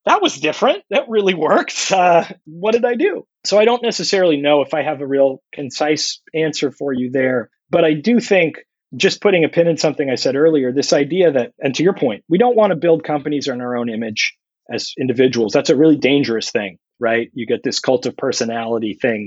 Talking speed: 220 wpm